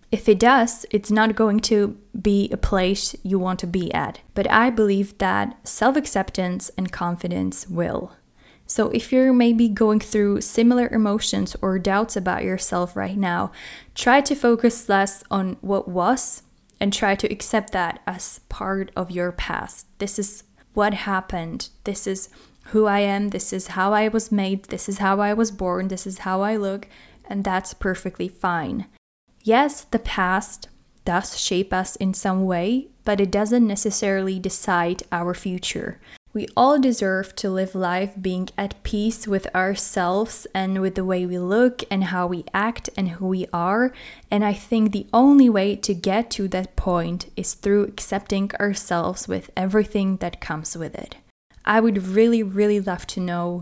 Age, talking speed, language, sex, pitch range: 10-29, 170 wpm, English, female, 185-215 Hz